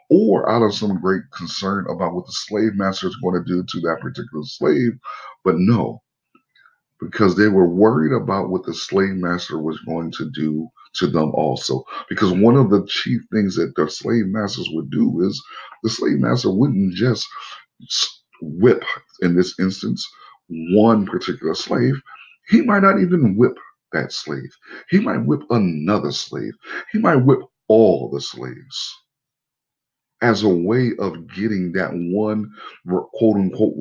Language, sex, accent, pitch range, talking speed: English, male, American, 85-130 Hz, 155 wpm